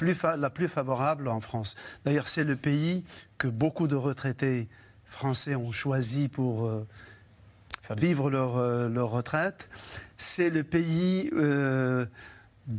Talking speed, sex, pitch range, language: 120 wpm, male, 125-165 Hz, French